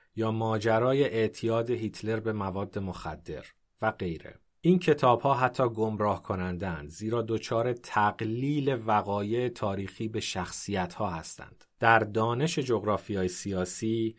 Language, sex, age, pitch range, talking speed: Persian, male, 30-49, 95-120 Hz, 115 wpm